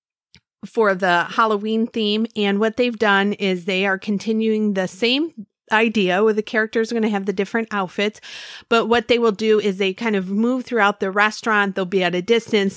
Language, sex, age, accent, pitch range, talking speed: English, female, 30-49, American, 185-230 Hz, 200 wpm